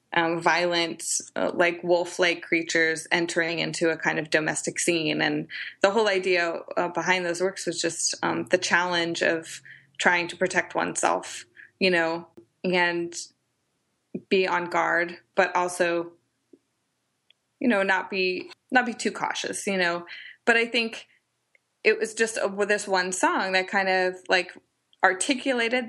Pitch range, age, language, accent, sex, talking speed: 175-195 Hz, 20-39, English, American, female, 150 wpm